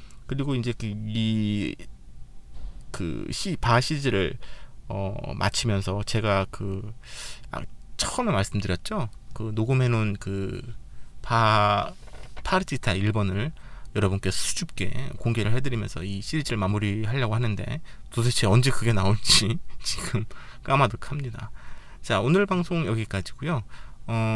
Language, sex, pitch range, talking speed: English, male, 105-135 Hz, 85 wpm